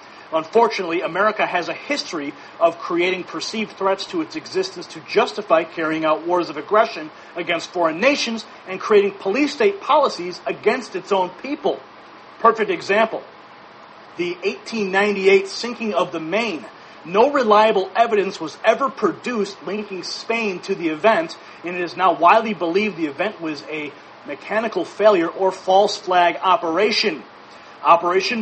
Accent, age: American, 40-59